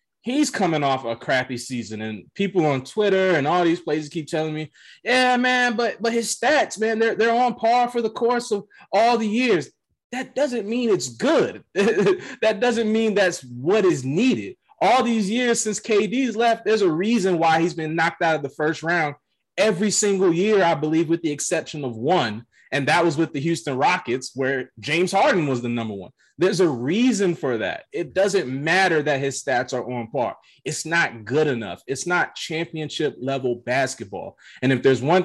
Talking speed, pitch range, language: 195 wpm, 135-210 Hz, English